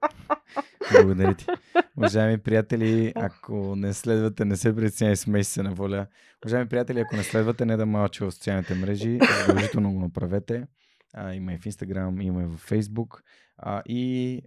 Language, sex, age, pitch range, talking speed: Bulgarian, male, 20-39, 95-115 Hz, 160 wpm